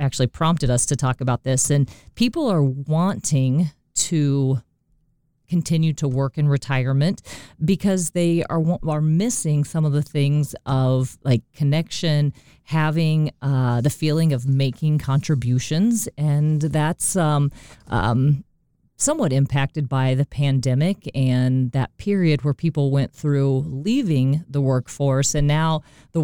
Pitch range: 135-170 Hz